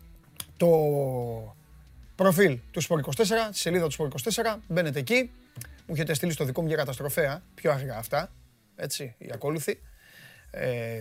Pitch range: 130-170 Hz